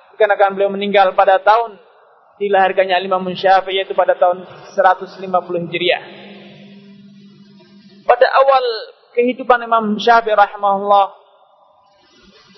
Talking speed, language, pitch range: 90 wpm, Malay, 195-220 Hz